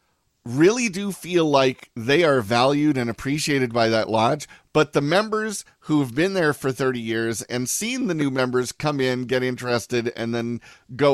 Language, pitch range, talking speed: English, 120-170 Hz, 180 wpm